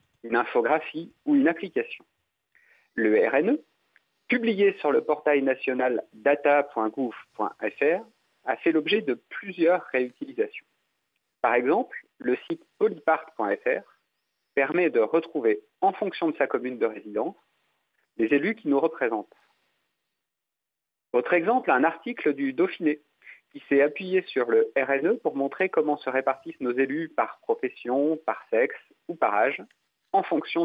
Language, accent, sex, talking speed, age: French, French, male, 130 wpm, 40-59